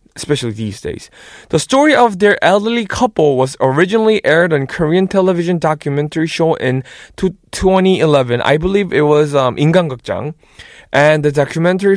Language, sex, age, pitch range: Korean, male, 20-39, 140-195 Hz